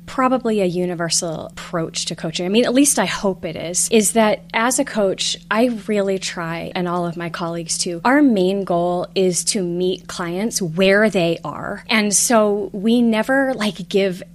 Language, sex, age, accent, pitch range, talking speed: English, female, 20-39, American, 180-230 Hz, 185 wpm